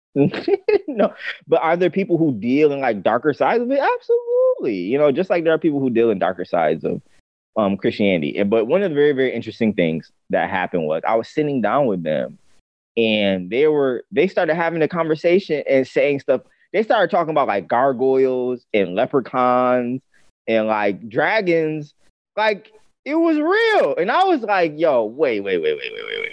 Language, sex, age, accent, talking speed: English, male, 20-39, American, 195 wpm